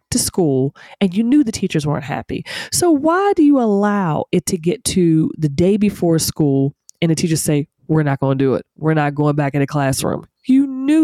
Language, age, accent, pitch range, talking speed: English, 30-49, American, 155-235 Hz, 225 wpm